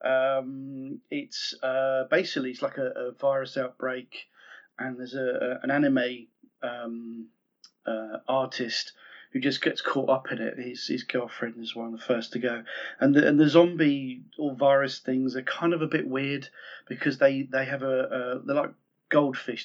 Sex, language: male, English